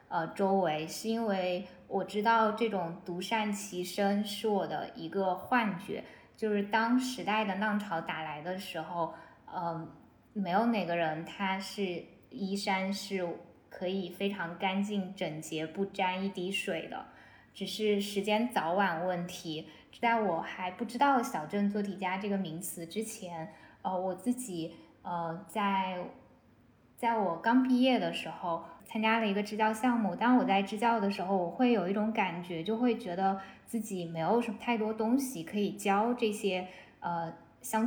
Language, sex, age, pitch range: Chinese, female, 10-29, 180-225 Hz